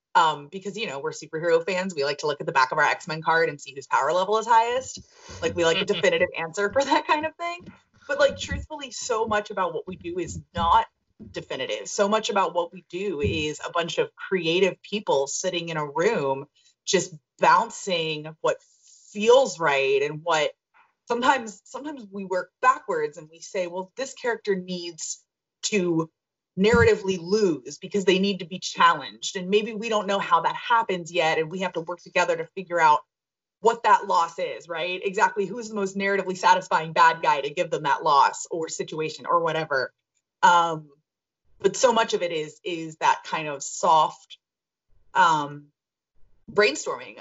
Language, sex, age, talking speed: English, female, 20-39, 185 wpm